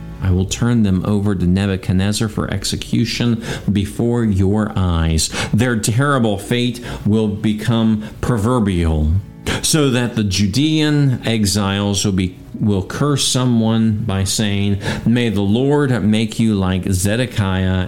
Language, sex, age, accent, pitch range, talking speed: English, male, 50-69, American, 95-120 Hz, 125 wpm